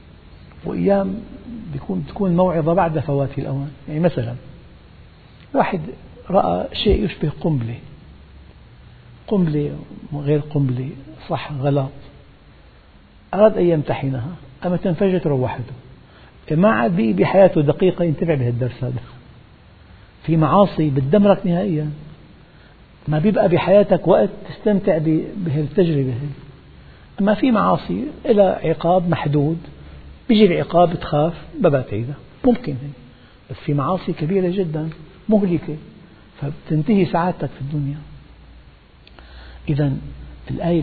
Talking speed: 95 wpm